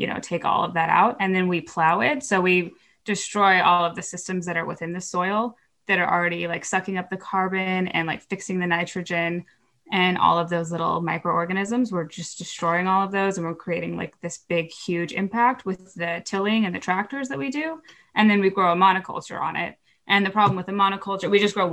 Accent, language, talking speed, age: American, English, 230 wpm, 10-29